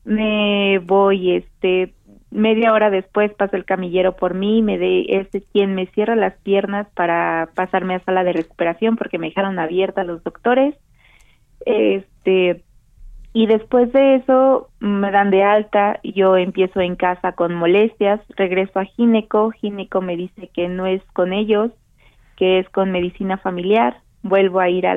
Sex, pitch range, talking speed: female, 175-205 Hz, 155 wpm